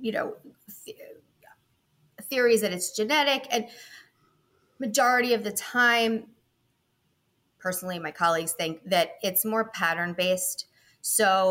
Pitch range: 170-225 Hz